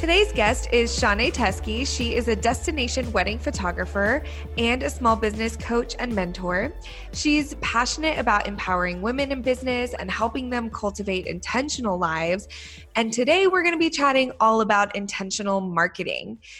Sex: female